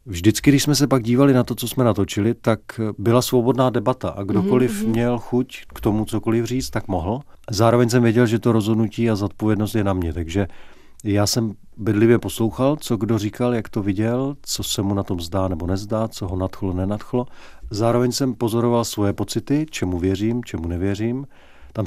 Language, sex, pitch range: Czech, male, 100-120 Hz